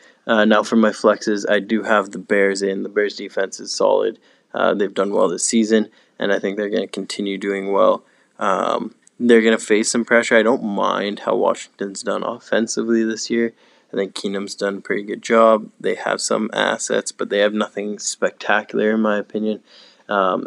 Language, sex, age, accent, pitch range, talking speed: English, male, 20-39, American, 100-115 Hz, 200 wpm